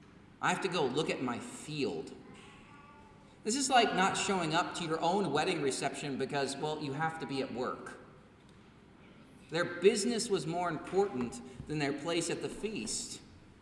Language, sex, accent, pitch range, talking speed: English, male, American, 155-215 Hz, 170 wpm